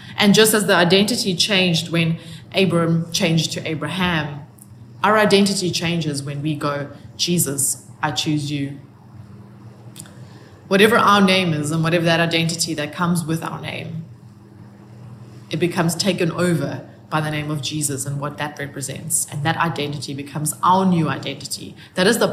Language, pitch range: English, 145-190 Hz